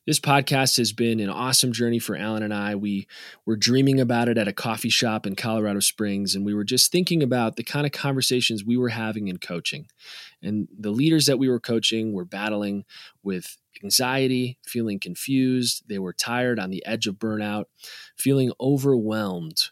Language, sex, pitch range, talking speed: English, male, 100-130 Hz, 185 wpm